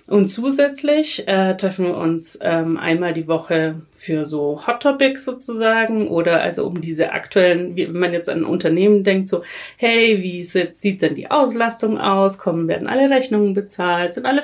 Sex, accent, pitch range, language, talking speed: female, German, 165-215 Hz, German, 185 wpm